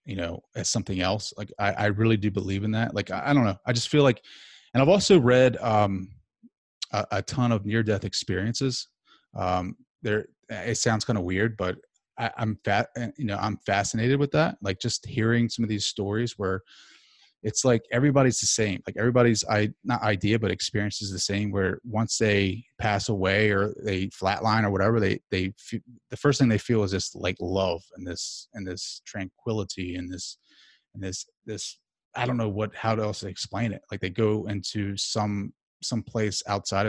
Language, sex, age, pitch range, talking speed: English, male, 30-49, 95-120 Hz, 200 wpm